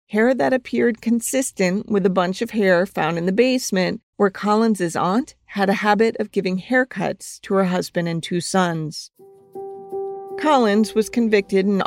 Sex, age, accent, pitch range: female, 40-59, American, 180-225 Hz